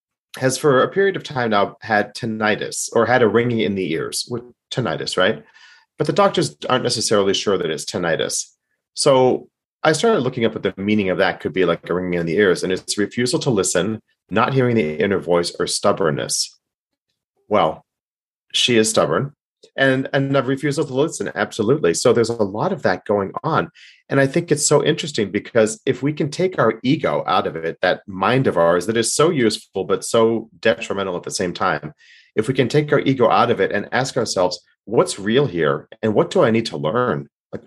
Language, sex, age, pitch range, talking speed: English, male, 40-59, 110-145 Hz, 210 wpm